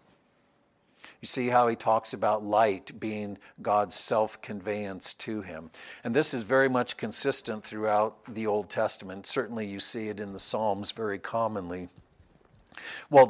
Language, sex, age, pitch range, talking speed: English, male, 60-79, 105-120 Hz, 145 wpm